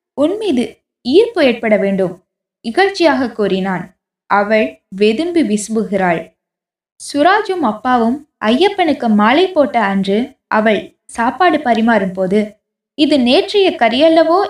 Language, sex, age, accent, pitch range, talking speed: Tamil, female, 20-39, native, 200-310 Hz, 90 wpm